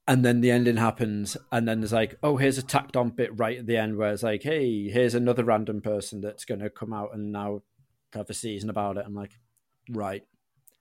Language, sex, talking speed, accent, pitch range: English, male, 230 wpm, British, 105-130 Hz